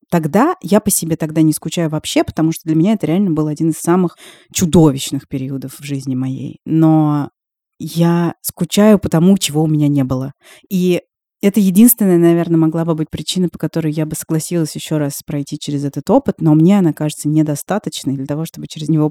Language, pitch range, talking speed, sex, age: Russian, 155-185 Hz, 195 wpm, female, 20-39